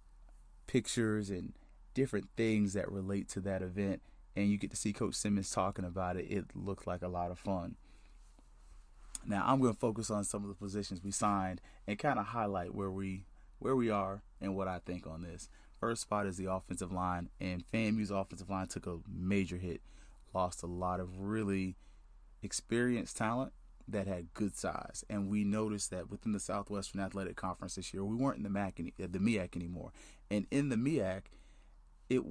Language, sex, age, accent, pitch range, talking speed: English, male, 30-49, American, 90-105 Hz, 190 wpm